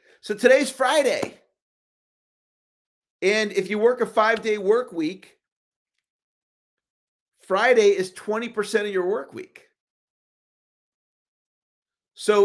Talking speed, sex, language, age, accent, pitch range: 90 wpm, male, English, 40-59, American, 165-235 Hz